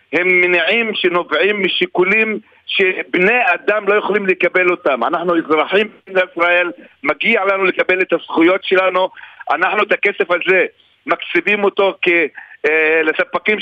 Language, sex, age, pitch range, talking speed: Hebrew, male, 50-69, 185-230 Hz, 120 wpm